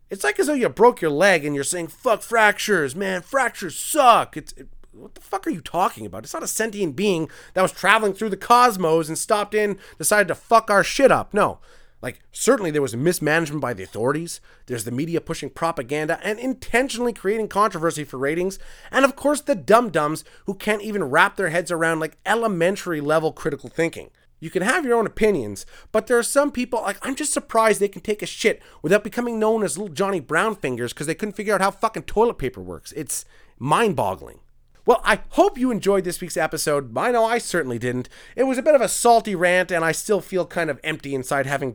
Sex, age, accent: male, 30-49, American